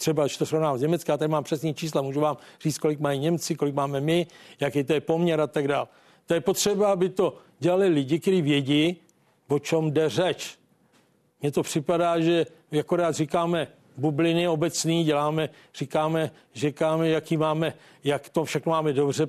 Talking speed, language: 175 wpm, Czech